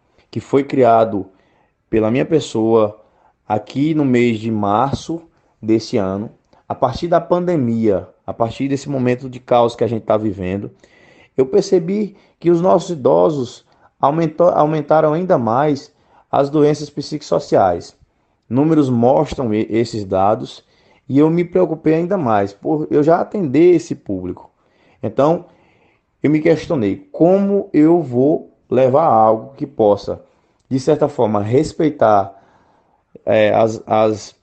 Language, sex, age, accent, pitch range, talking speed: Portuguese, male, 20-39, Brazilian, 110-160 Hz, 130 wpm